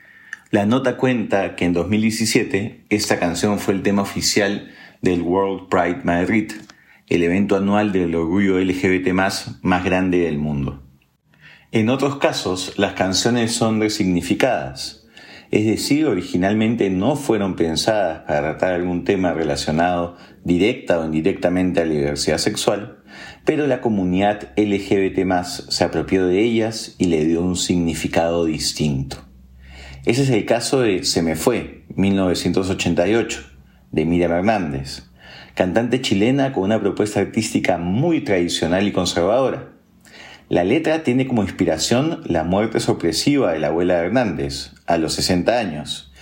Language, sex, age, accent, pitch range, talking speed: Spanish, male, 40-59, Argentinian, 85-105 Hz, 135 wpm